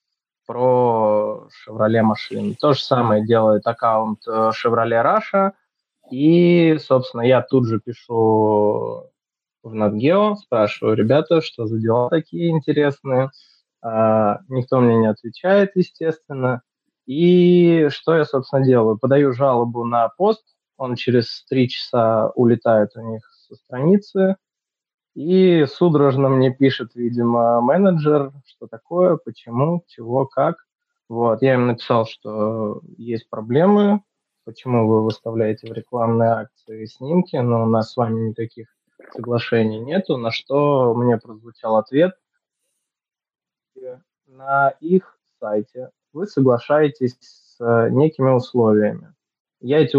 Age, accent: 20-39, native